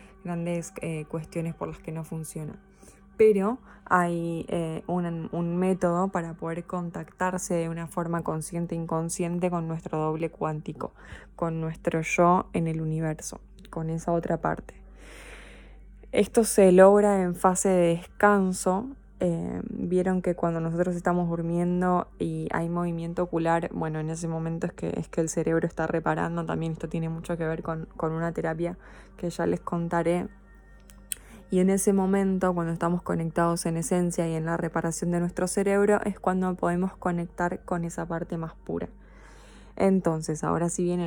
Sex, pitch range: female, 165-185 Hz